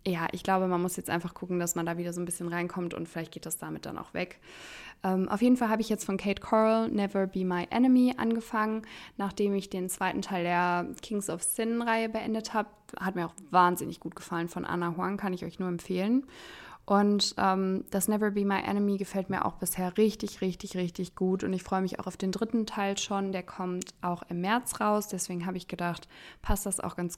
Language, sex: German, female